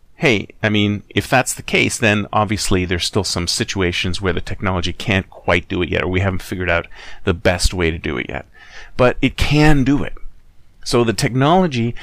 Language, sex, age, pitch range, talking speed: English, male, 40-59, 90-115 Hz, 205 wpm